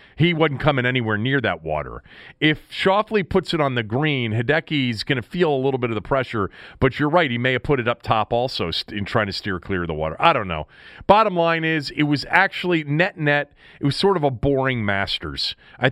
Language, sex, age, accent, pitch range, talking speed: English, male, 40-59, American, 100-140 Hz, 230 wpm